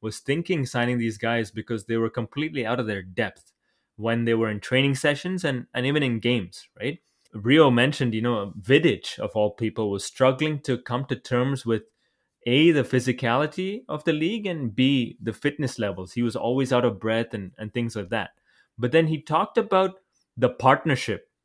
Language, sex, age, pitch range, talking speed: English, male, 20-39, 115-145 Hz, 195 wpm